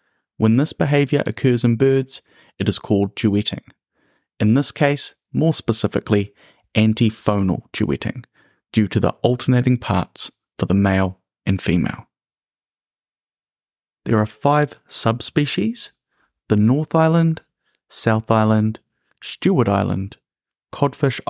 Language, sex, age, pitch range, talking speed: English, male, 30-49, 105-140 Hz, 110 wpm